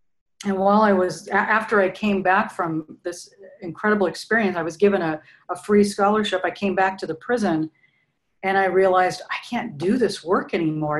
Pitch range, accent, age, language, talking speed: 165-195 Hz, American, 40-59, English, 185 wpm